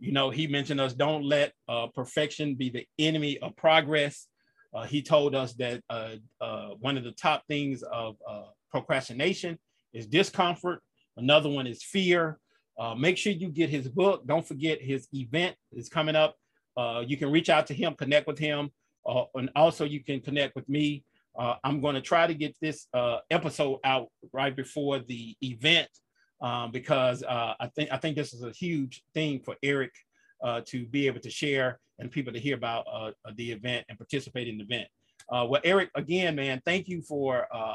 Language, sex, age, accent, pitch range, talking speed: English, male, 40-59, American, 125-155 Hz, 195 wpm